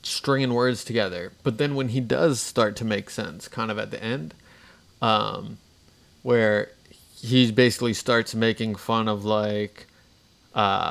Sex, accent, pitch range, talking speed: male, American, 105-125 Hz, 150 wpm